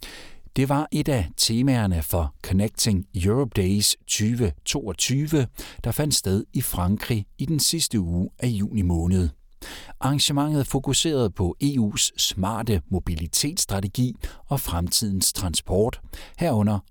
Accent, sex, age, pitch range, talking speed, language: native, male, 60-79, 90-130 Hz, 115 wpm, Danish